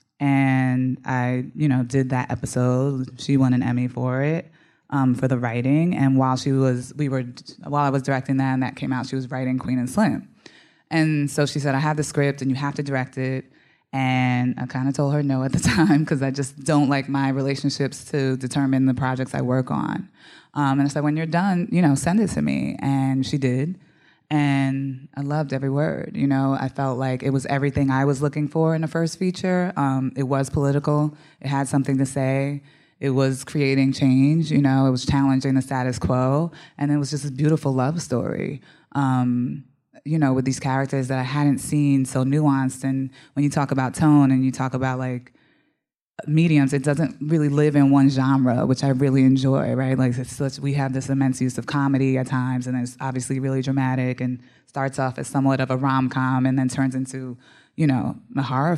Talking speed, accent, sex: 215 wpm, American, female